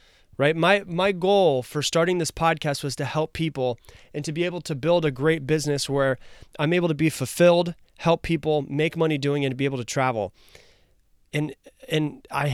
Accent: American